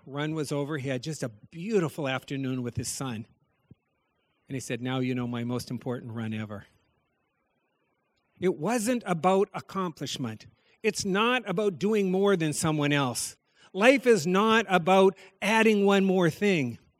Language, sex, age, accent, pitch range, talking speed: English, male, 50-69, American, 160-225 Hz, 150 wpm